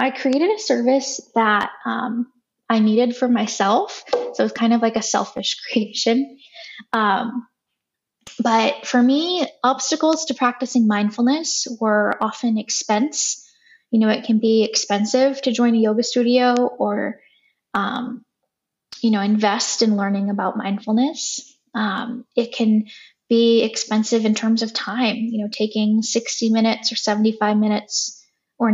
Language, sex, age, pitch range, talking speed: English, female, 10-29, 215-255 Hz, 140 wpm